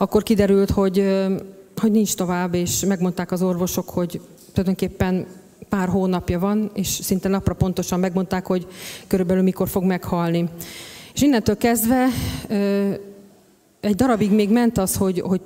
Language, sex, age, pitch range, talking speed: Hungarian, female, 30-49, 185-205 Hz, 135 wpm